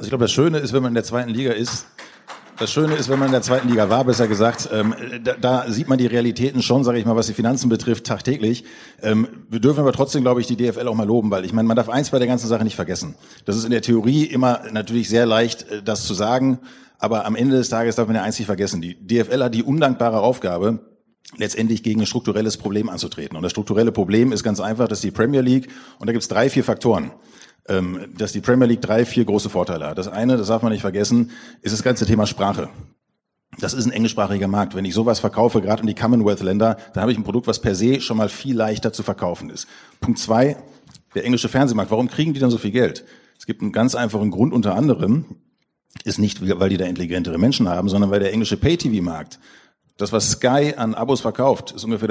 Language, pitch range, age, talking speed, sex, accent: German, 105-125 Hz, 50-69, 240 wpm, male, German